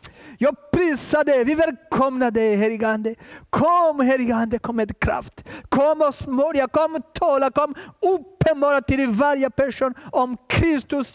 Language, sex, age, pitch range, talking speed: Swedish, male, 40-59, 235-300 Hz, 135 wpm